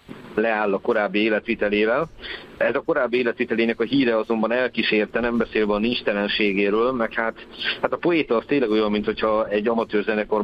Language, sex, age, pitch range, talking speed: Hungarian, male, 50-69, 100-115 Hz, 165 wpm